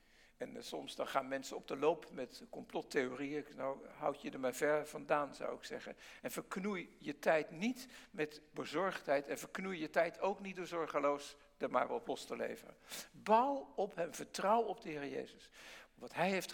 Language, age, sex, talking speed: English, 60-79, male, 190 wpm